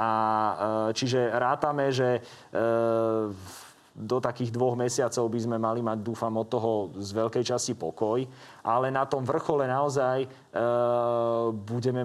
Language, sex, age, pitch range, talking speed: Slovak, male, 30-49, 110-130 Hz, 135 wpm